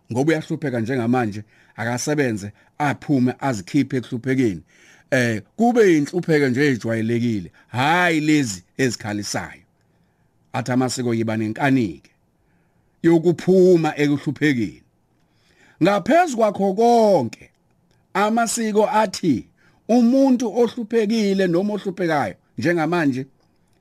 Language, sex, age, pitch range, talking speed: English, male, 60-79, 145-225 Hz, 90 wpm